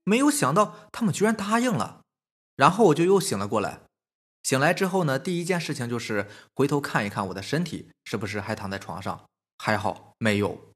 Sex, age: male, 20-39